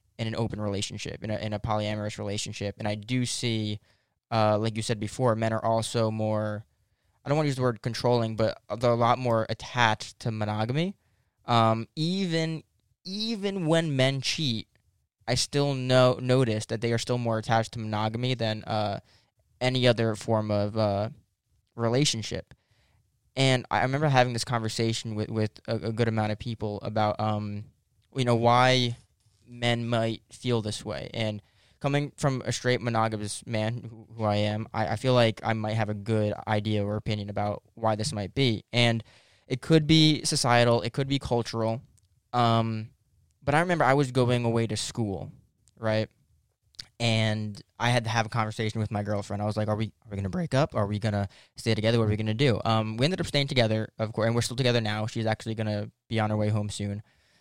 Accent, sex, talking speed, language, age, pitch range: American, male, 200 wpm, English, 10-29, 105-120 Hz